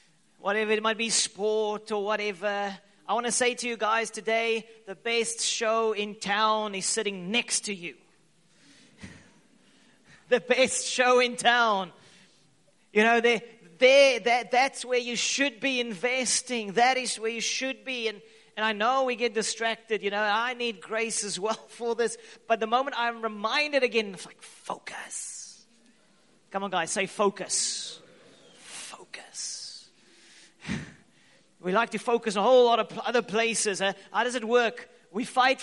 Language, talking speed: English, 160 wpm